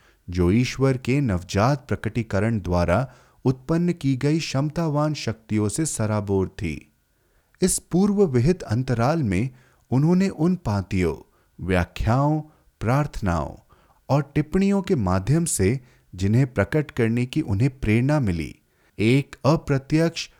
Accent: native